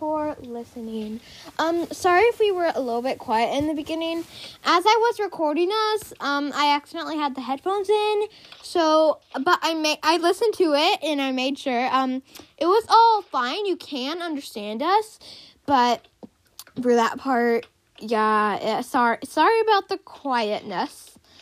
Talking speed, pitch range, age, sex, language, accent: 165 wpm, 260-355 Hz, 10-29, female, English, American